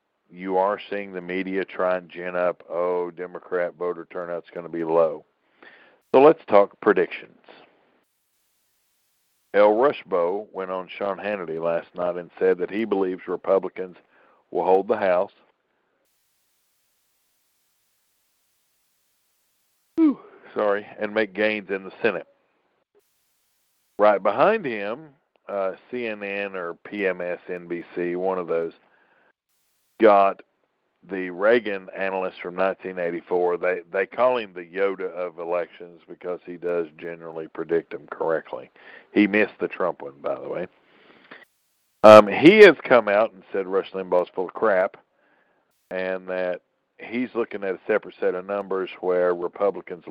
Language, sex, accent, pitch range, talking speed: English, male, American, 90-105 Hz, 135 wpm